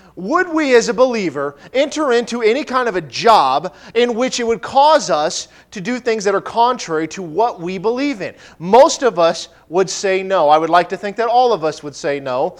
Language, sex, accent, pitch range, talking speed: English, male, American, 175-240 Hz, 225 wpm